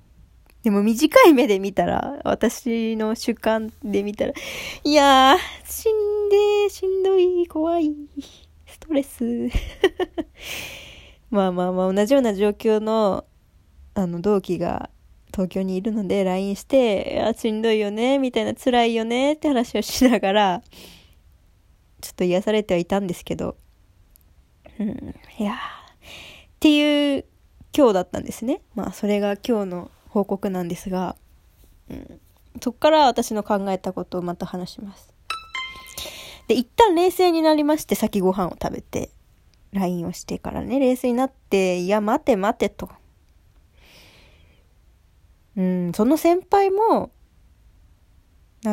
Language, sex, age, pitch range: Japanese, female, 20-39, 185-280 Hz